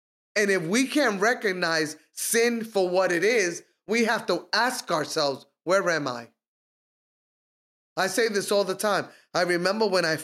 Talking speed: 165 wpm